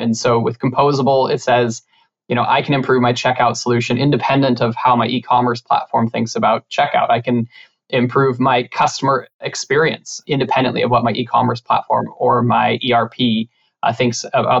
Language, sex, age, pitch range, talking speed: English, male, 20-39, 120-135 Hz, 170 wpm